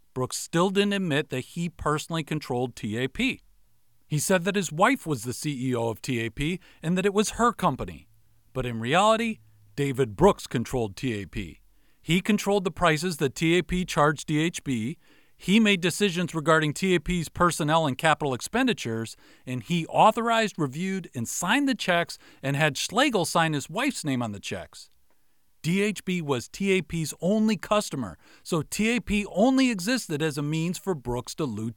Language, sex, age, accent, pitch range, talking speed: English, male, 40-59, American, 130-190 Hz, 155 wpm